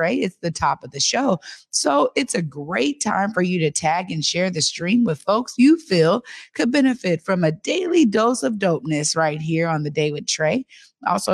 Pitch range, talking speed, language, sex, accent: 165-220 Hz, 205 wpm, English, female, American